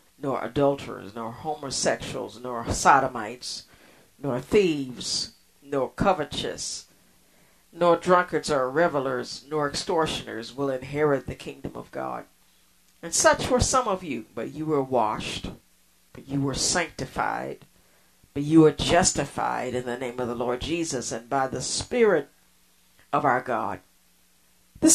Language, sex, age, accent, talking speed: English, female, 60-79, American, 130 wpm